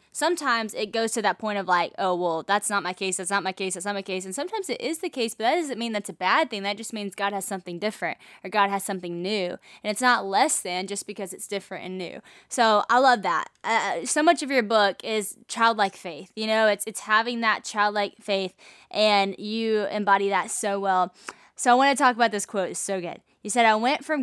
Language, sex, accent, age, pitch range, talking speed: English, female, American, 10-29, 200-255 Hz, 255 wpm